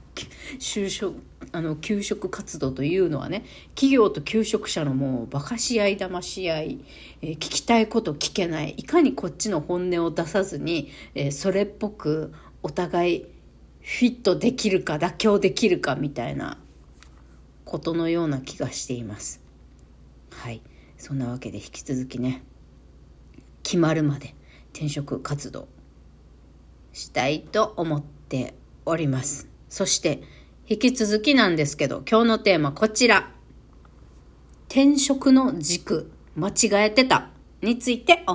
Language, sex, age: Japanese, female, 40-59